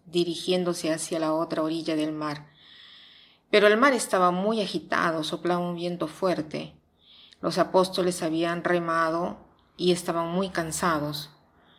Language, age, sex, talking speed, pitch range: Spanish, 40-59, female, 125 wpm, 160-190 Hz